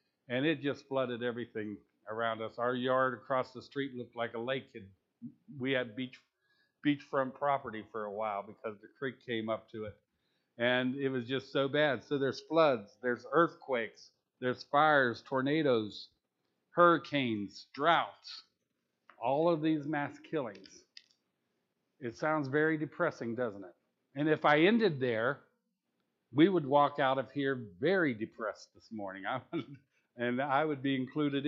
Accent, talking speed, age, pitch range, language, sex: American, 150 wpm, 50-69, 120-155 Hz, English, male